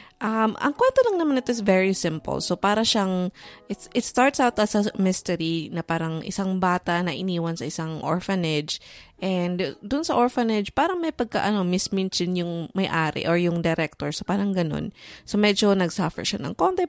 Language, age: English, 20-39